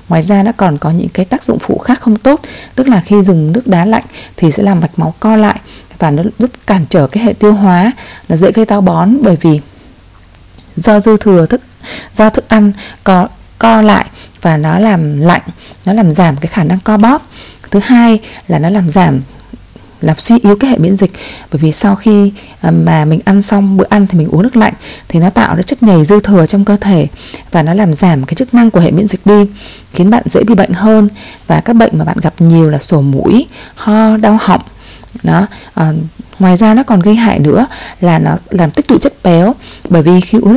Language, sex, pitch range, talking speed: Vietnamese, female, 170-220 Hz, 230 wpm